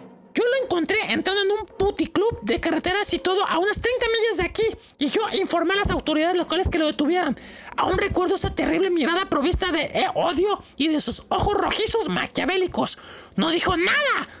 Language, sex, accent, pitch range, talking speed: Spanish, male, Mexican, 335-410 Hz, 190 wpm